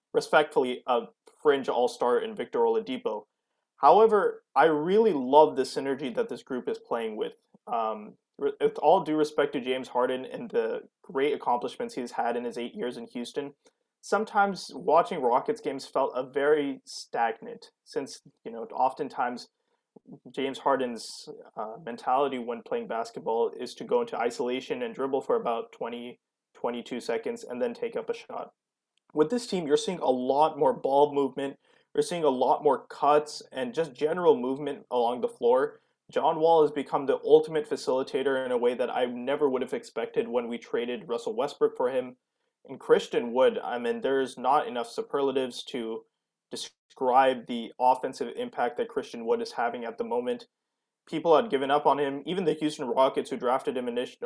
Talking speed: 175 wpm